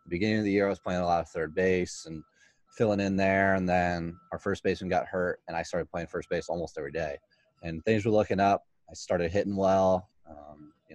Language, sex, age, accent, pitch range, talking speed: English, male, 20-39, American, 90-105 Hz, 235 wpm